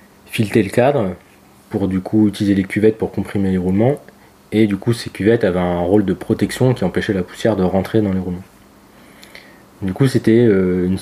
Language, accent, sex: French, French, male